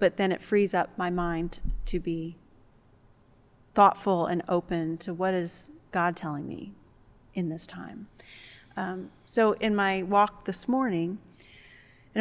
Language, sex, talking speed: English, female, 145 wpm